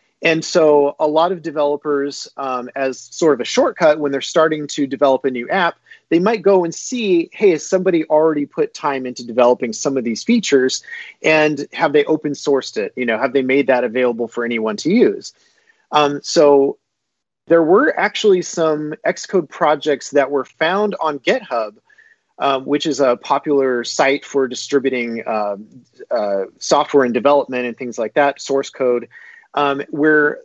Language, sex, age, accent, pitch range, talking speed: English, male, 30-49, American, 135-165 Hz, 175 wpm